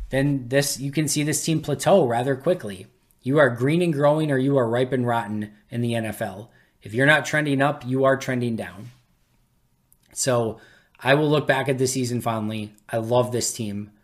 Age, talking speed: 20-39, 195 wpm